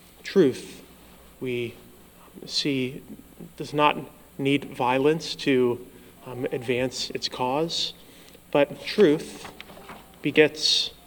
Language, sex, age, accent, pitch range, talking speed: English, male, 30-49, American, 120-145 Hz, 80 wpm